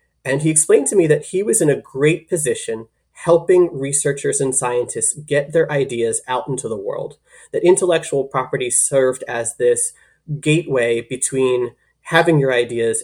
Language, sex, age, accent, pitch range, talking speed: English, male, 20-39, American, 125-160 Hz, 155 wpm